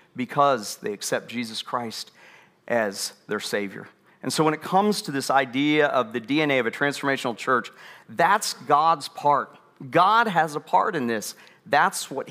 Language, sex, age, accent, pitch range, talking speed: English, male, 40-59, American, 125-155 Hz, 165 wpm